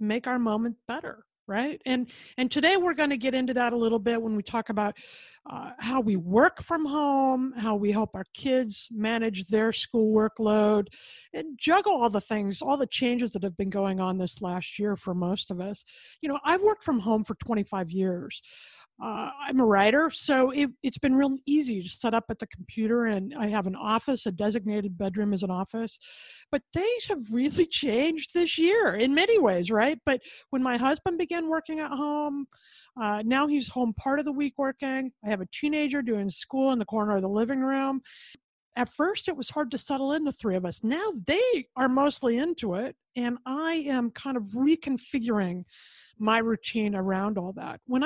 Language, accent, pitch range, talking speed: English, American, 215-285 Hz, 205 wpm